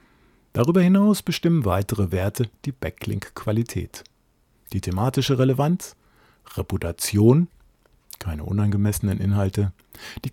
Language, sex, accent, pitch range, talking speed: German, male, German, 100-135 Hz, 85 wpm